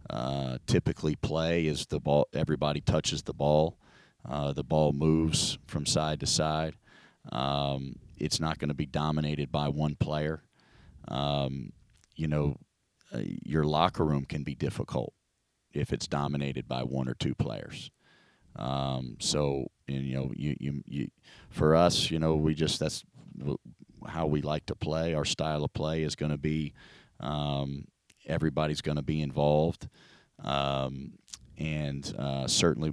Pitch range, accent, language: 70-80 Hz, American, English